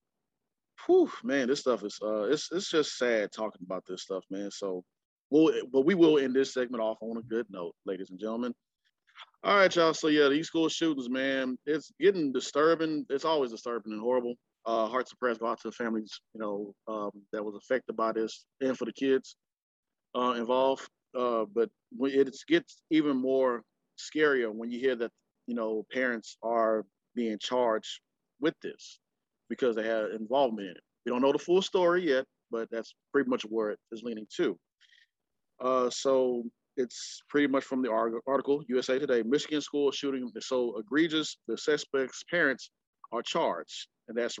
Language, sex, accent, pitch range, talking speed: English, male, American, 115-145 Hz, 185 wpm